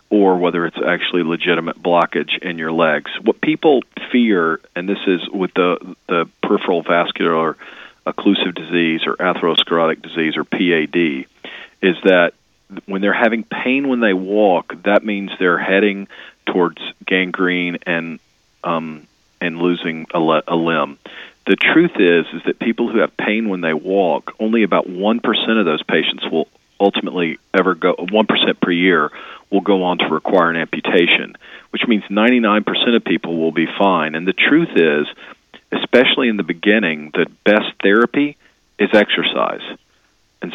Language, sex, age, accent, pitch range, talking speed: English, male, 40-59, American, 80-100 Hz, 155 wpm